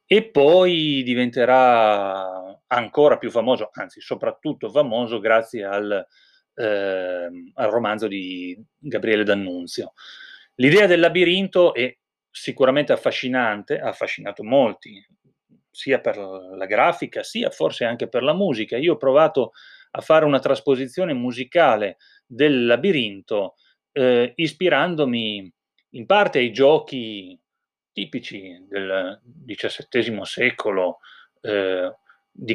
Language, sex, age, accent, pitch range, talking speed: Italian, male, 30-49, native, 100-135 Hz, 105 wpm